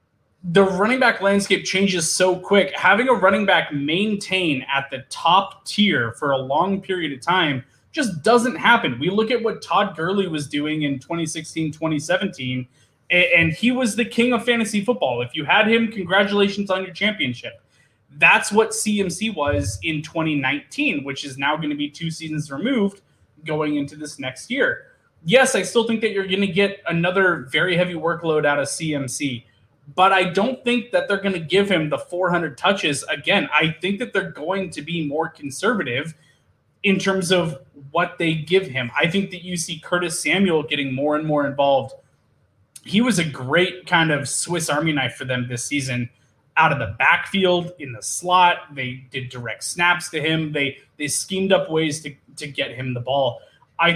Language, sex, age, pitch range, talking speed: English, male, 20-39, 140-195 Hz, 185 wpm